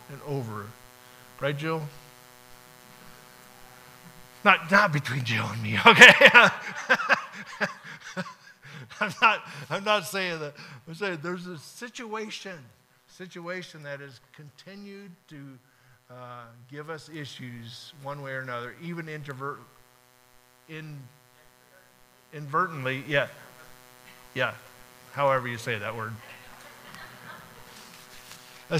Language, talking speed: English, 100 wpm